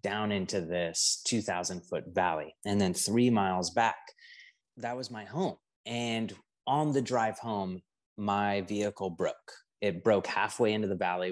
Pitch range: 95-115 Hz